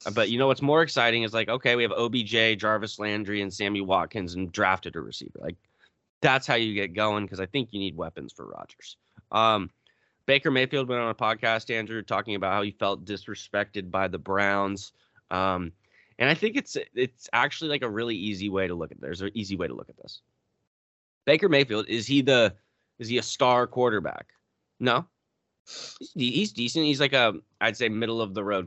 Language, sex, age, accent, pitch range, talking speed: English, male, 20-39, American, 95-125 Hz, 200 wpm